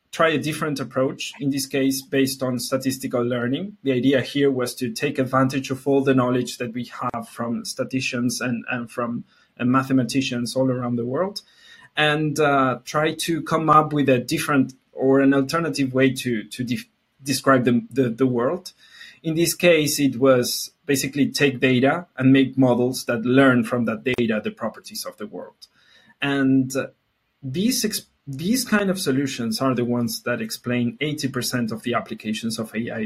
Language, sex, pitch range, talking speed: English, male, 125-155 Hz, 170 wpm